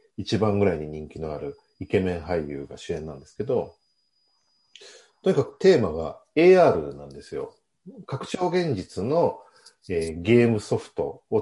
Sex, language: male, Japanese